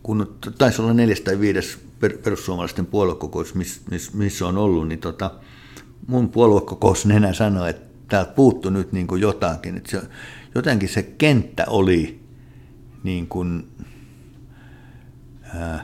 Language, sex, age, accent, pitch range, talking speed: Finnish, male, 60-79, native, 90-110 Hz, 120 wpm